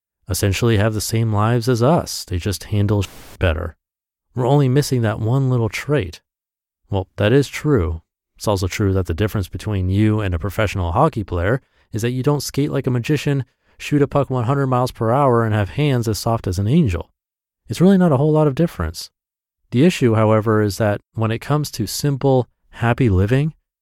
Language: English